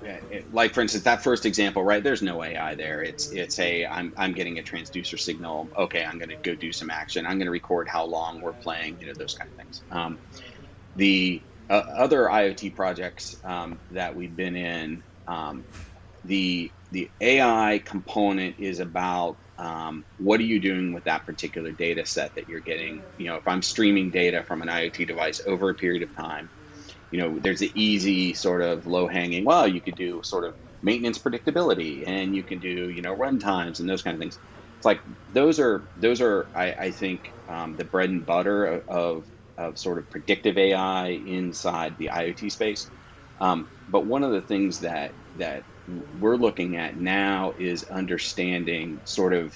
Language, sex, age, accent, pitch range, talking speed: English, male, 30-49, American, 85-100 Hz, 190 wpm